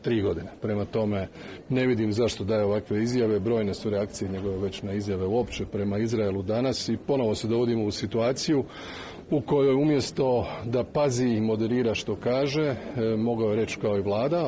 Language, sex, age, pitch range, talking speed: Croatian, male, 40-59, 100-120 Hz, 175 wpm